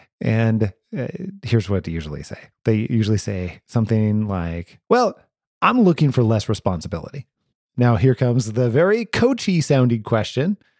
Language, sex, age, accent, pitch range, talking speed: English, male, 30-49, American, 105-155 Hz, 145 wpm